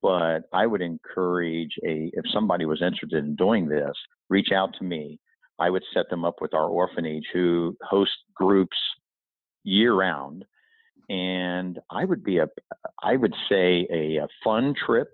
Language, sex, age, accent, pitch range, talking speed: English, male, 50-69, American, 80-95 Hz, 165 wpm